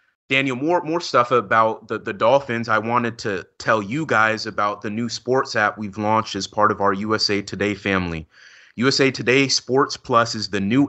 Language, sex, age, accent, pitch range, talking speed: English, male, 30-49, American, 110-130 Hz, 195 wpm